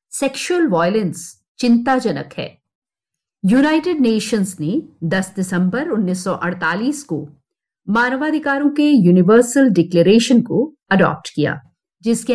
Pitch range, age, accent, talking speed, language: 190-290 Hz, 50-69, native, 100 wpm, Hindi